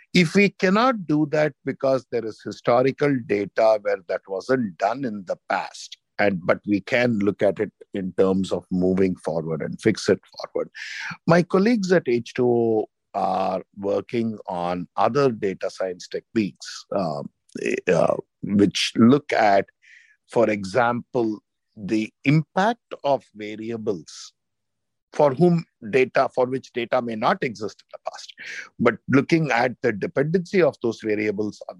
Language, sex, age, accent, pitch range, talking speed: English, male, 50-69, Indian, 110-170 Hz, 145 wpm